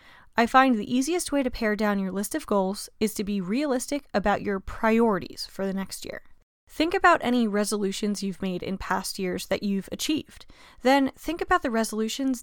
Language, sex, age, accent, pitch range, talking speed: English, female, 10-29, American, 200-260 Hz, 195 wpm